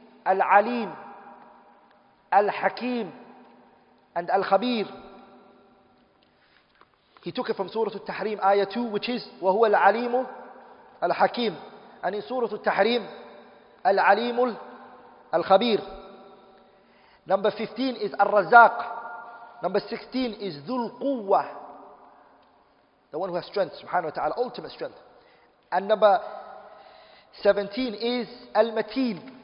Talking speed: 105 wpm